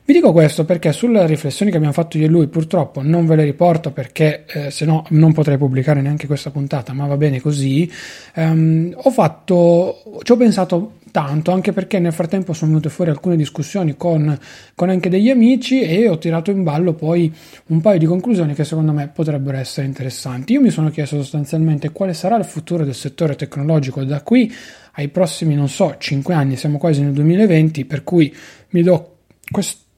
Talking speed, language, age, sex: 195 wpm, Italian, 30-49, male